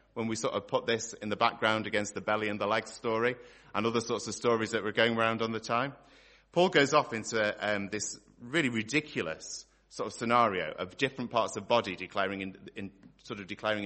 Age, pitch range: 30-49, 105-145 Hz